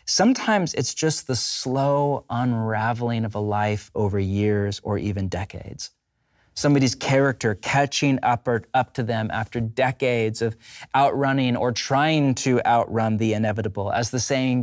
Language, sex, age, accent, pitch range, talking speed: English, male, 30-49, American, 110-135 Hz, 140 wpm